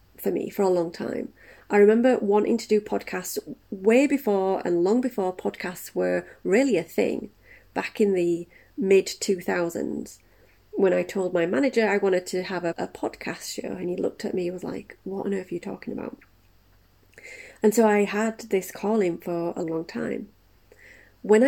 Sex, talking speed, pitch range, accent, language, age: female, 185 wpm, 170-205 Hz, British, English, 30-49